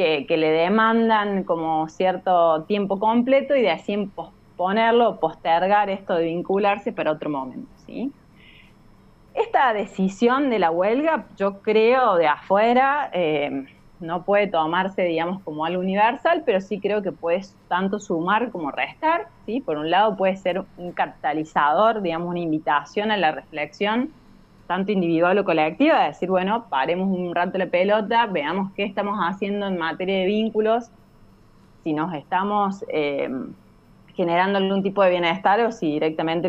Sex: female